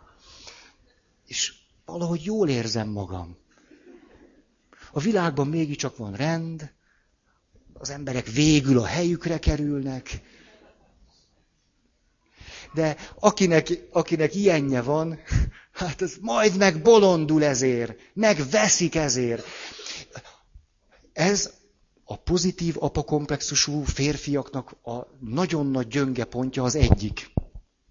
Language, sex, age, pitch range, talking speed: Hungarian, male, 50-69, 120-160 Hz, 85 wpm